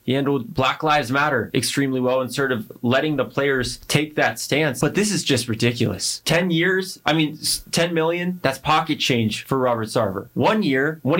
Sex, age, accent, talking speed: male, 20-39, American, 195 wpm